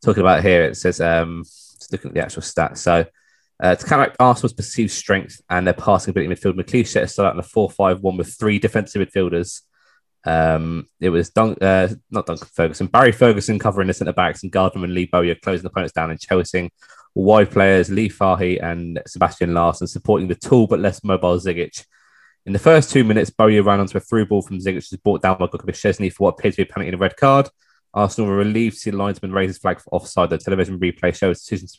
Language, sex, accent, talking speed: English, male, British, 240 wpm